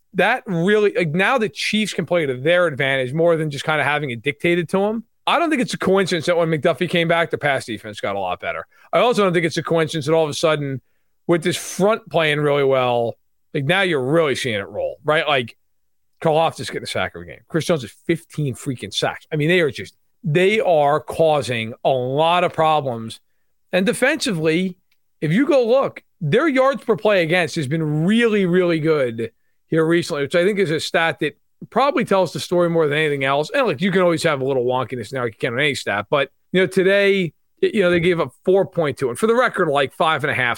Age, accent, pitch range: 40-59, American, 140-190 Hz